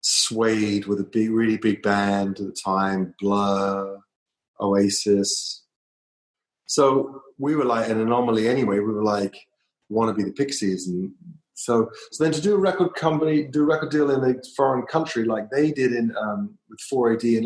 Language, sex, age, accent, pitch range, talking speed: English, male, 30-49, British, 105-135 Hz, 180 wpm